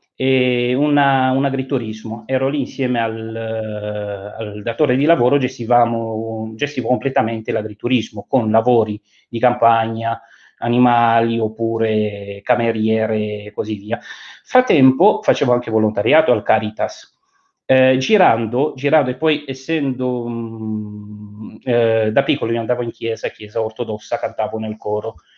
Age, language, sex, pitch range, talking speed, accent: 30-49, Italian, male, 115-150 Hz, 120 wpm, native